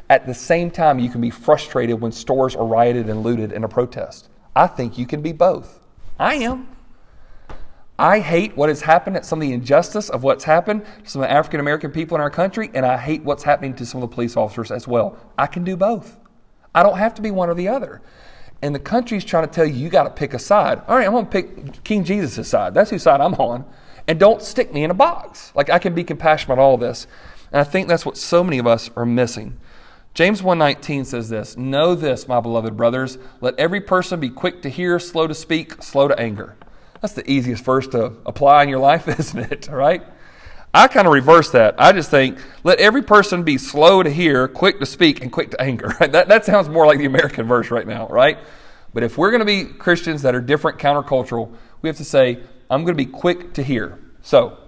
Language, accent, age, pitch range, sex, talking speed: English, American, 40-59, 125-175 Hz, male, 240 wpm